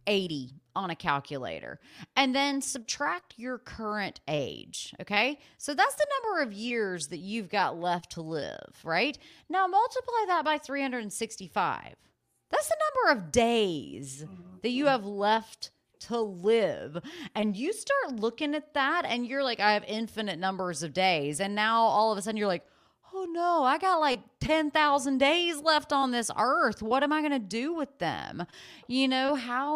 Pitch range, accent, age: 200-265 Hz, American, 30-49